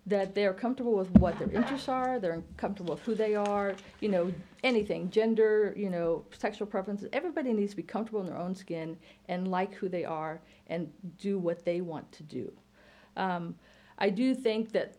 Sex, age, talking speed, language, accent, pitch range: female, 50-69, 190 wpm, English, American, 170-205 Hz